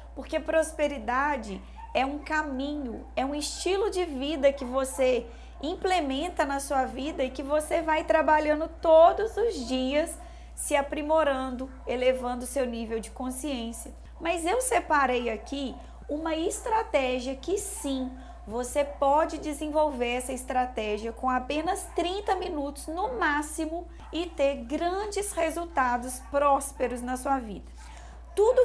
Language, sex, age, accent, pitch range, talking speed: Portuguese, female, 20-39, Brazilian, 260-330 Hz, 125 wpm